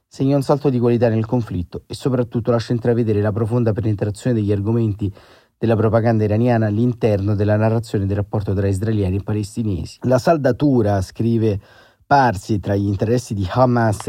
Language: Italian